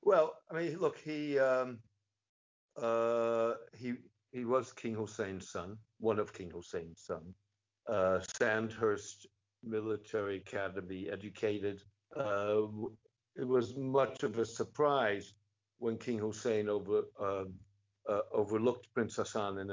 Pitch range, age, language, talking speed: 100-130 Hz, 60-79, Danish, 120 wpm